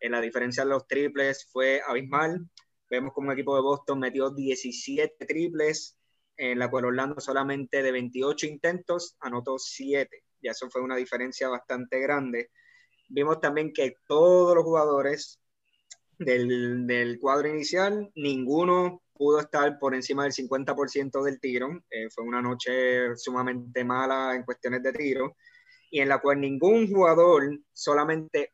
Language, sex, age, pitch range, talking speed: Spanish, male, 20-39, 130-150 Hz, 145 wpm